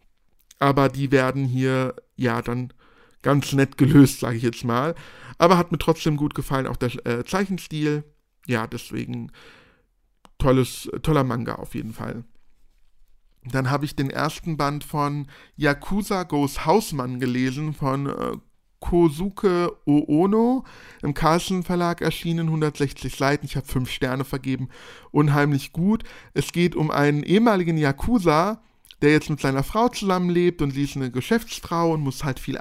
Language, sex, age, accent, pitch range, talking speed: German, male, 50-69, German, 135-165 Hz, 145 wpm